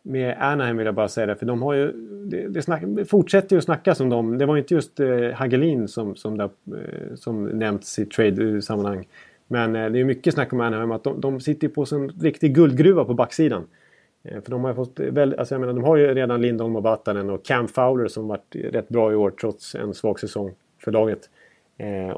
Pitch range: 110-140 Hz